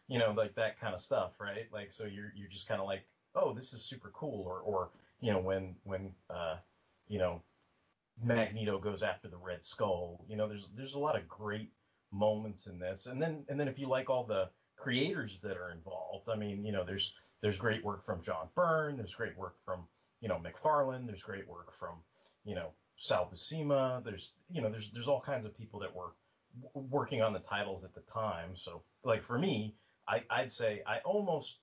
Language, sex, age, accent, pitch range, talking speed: English, male, 30-49, American, 95-120 Hz, 215 wpm